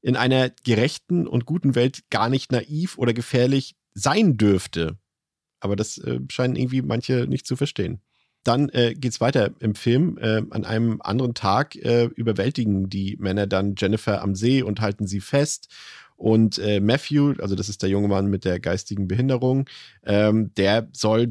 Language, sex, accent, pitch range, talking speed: German, male, German, 100-120 Hz, 170 wpm